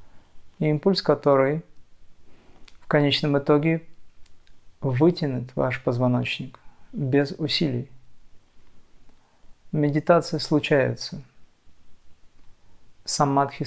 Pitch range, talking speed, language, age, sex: 125-150 Hz, 60 wpm, Russian, 40-59, male